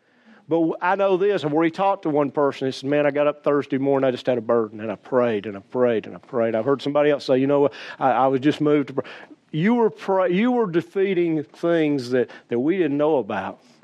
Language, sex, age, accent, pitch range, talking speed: English, male, 50-69, American, 125-170 Hz, 260 wpm